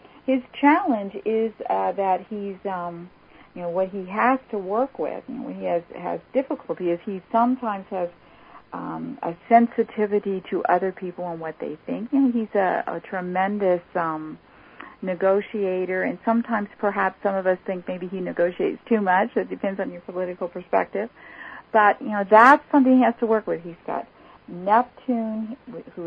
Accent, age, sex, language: American, 50-69, female, English